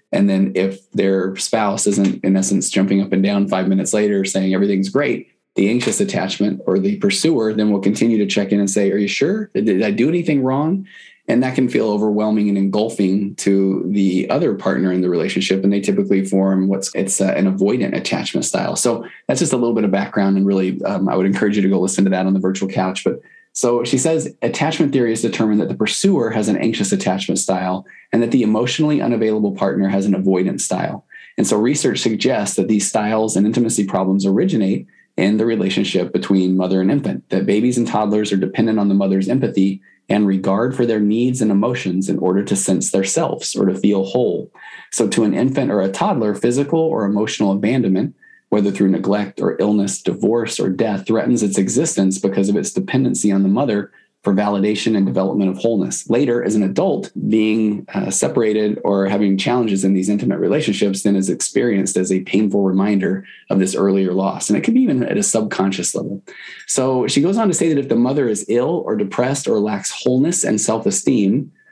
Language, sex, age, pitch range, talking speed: English, male, 20-39, 95-110 Hz, 205 wpm